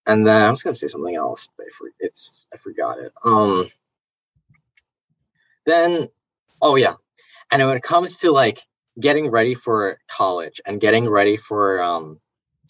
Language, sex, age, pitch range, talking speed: English, male, 20-39, 100-140 Hz, 155 wpm